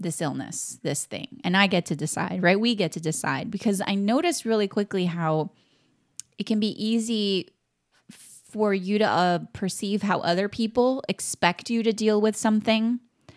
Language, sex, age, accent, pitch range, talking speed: English, female, 20-39, American, 165-205 Hz, 170 wpm